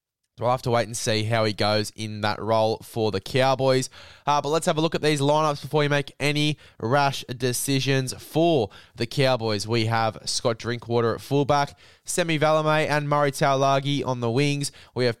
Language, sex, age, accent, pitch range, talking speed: English, male, 20-39, Australian, 115-145 Hz, 195 wpm